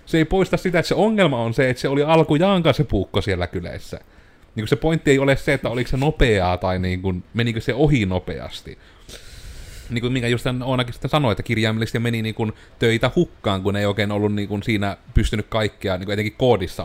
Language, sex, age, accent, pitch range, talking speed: Finnish, male, 30-49, native, 95-120 Hz, 205 wpm